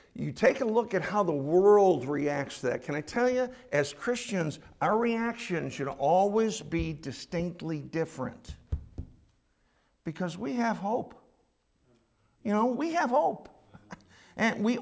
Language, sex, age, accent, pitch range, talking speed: English, male, 50-69, American, 175-250 Hz, 140 wpm